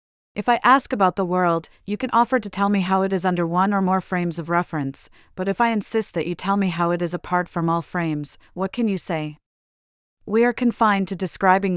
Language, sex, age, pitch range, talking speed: English, female, 30-49, 165-200 Hz, 235 wpm